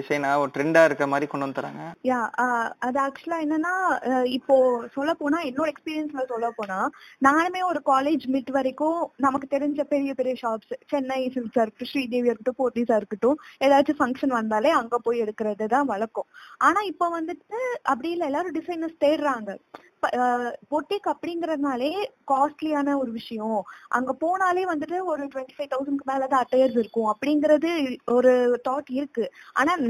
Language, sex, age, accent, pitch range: Tamil, female, 20-39, native, 250-320 Hz